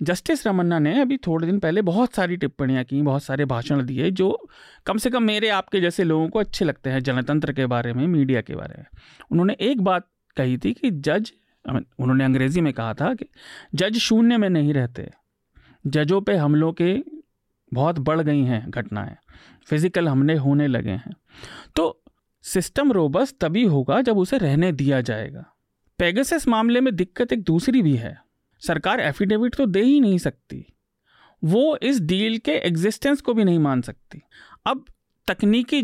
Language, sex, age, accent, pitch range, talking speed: Hindi, male, 40-59, native, 145-225 Hz, 175 wpm